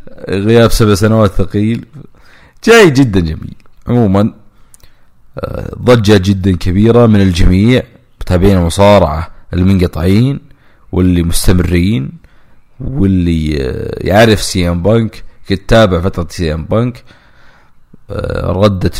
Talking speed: 90 wpm